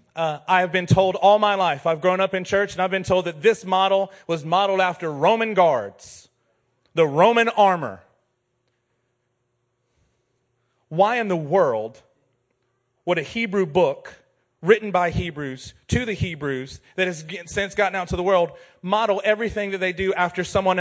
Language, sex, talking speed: English, male, 165 wpm